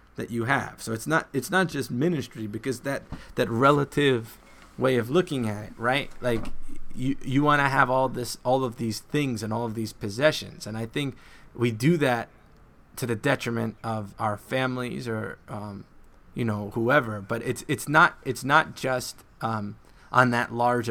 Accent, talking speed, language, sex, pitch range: American, 185 wpm, English, male, 115-135 Hz